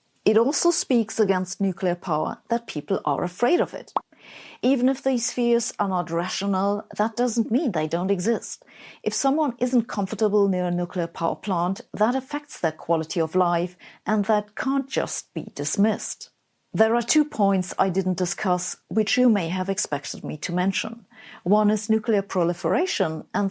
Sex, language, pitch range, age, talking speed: female, English, 180-230 Hz, 50-69, 170 wpm